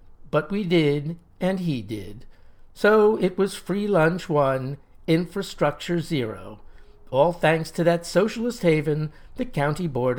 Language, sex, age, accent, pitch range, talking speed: English, male, 60-79, American, 125-185 Hz, 135 wpm